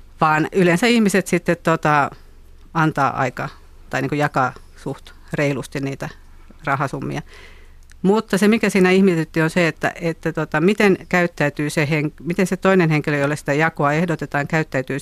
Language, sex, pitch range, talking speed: Finnish, female, 130-160 Hz, 150 wpm